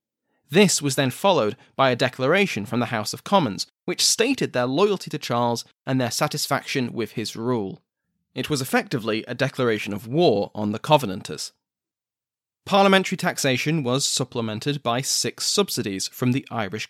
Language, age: English, 20-39